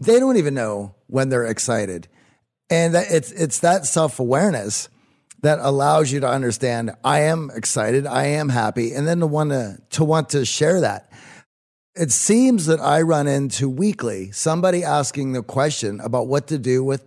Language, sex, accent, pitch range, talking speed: English, male, American, 125-170 Hz, 170 wpm